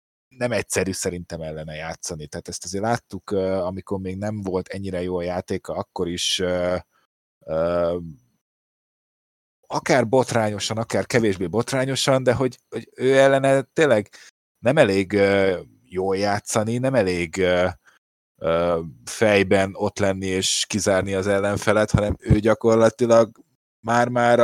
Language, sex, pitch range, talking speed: Hungarian, male, 95-110 Hz, 125 wpm